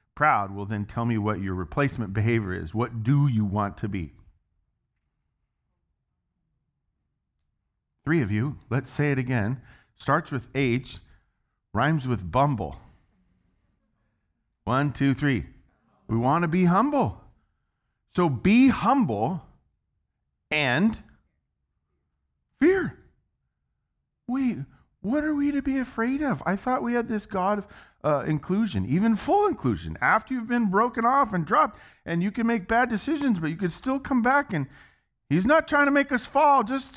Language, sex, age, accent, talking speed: English, male, 50-69, American, 145 wpm